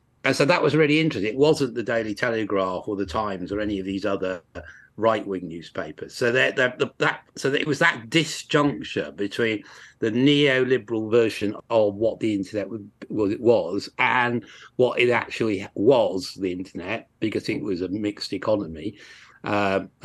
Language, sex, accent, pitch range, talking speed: English, male, British, 100-125 Hz, 170 wpm